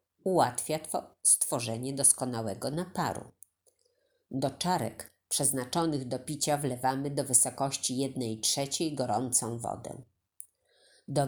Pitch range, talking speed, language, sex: 115-155 Hz, 90 wpm, Polish, female